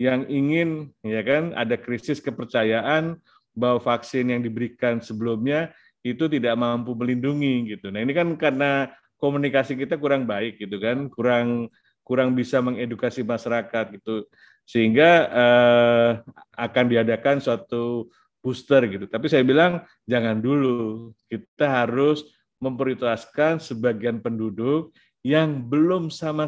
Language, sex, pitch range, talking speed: Indonesian, male, 120-150 Hz, 120 wpm